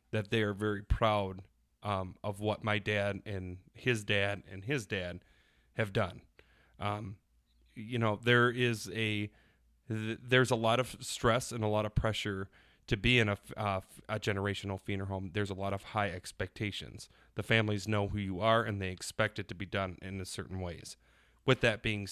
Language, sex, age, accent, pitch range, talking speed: English, male, 30-49, American, 95-110 Hz, 190 wpm